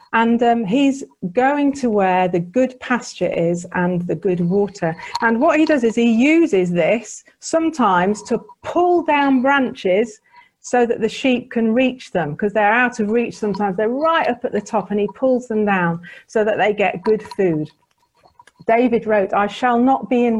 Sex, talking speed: female, 190 wpm